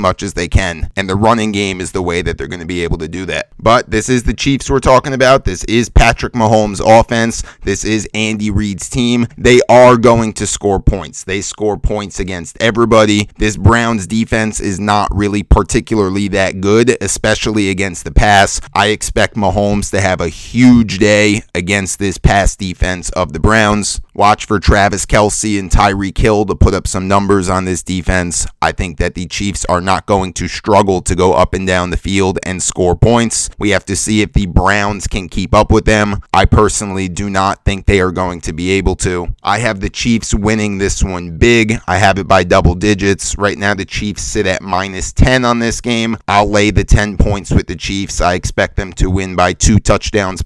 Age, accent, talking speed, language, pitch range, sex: 30-49, American, 210 wpm, English, 90-110 Hz, male